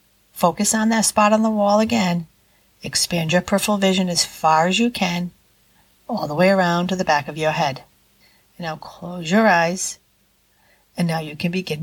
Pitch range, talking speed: 170-220 Hz, 185 wpm